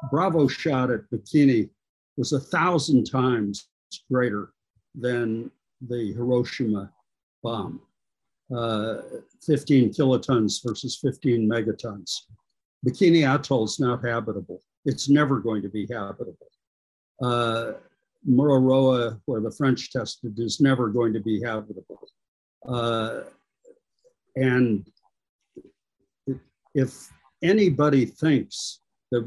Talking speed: 100 wpm